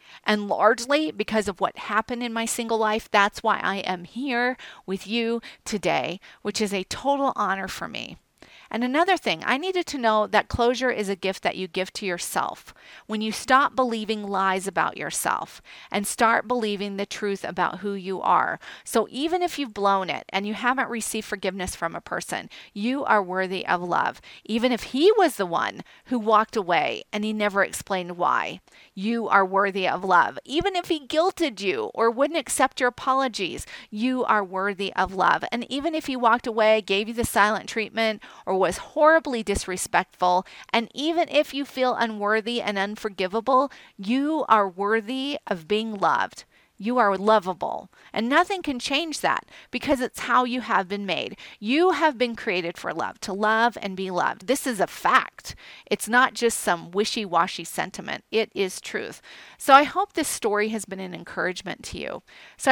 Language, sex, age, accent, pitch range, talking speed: English, female, 40-59, American, 200-255 Hz, 185 wpm